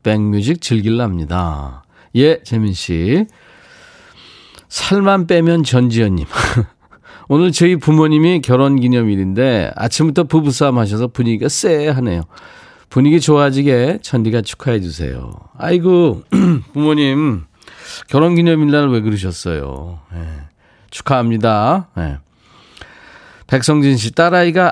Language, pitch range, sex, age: Korean, 105-150 Hz, male, 40-59